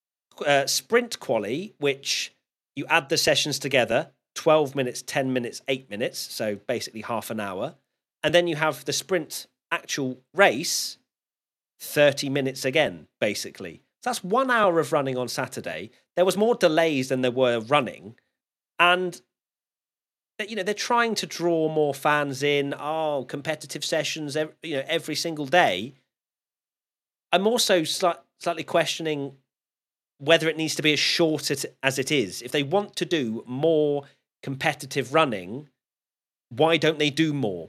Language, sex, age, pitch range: English, male, 40-59, 125-160 Hz